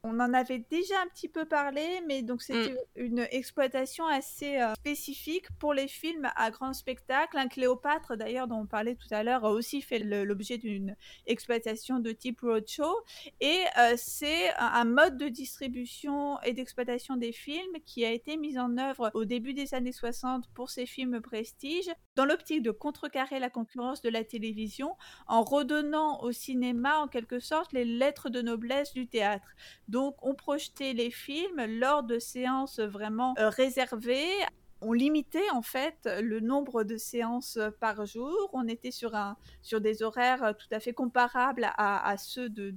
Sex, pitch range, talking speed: female, 220-280 Hz, 170 wpm